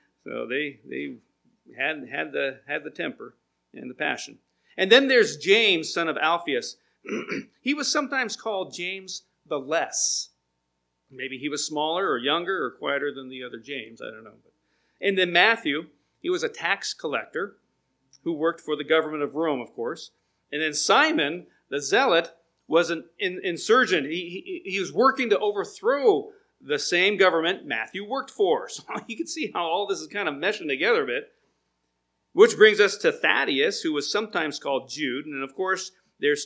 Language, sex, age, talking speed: English, male, 40-59, 175 wpm